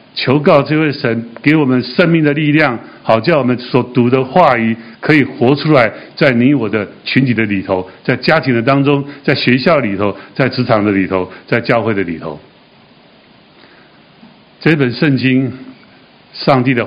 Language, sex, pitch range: Chinese, male, 115-145 Hz